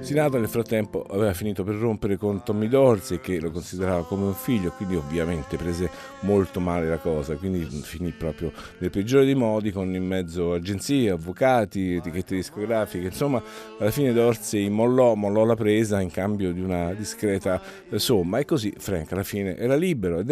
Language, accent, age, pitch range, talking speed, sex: Italian, native, 50-69, 90-115 Hz, 175 wpm, male